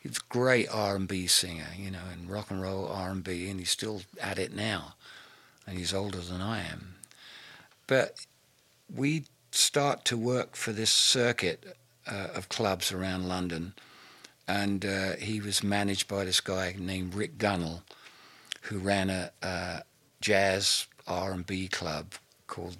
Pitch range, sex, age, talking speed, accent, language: 85-100 Hz, male, 50-69, 145 wpm, British, English